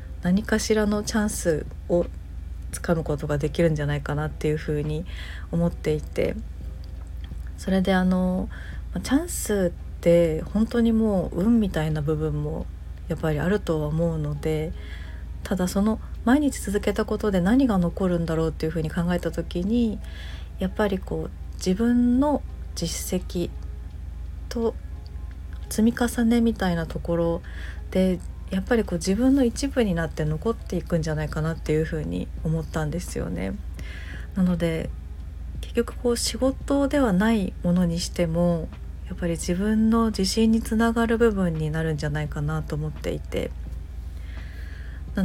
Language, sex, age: Japanese, female, 40-59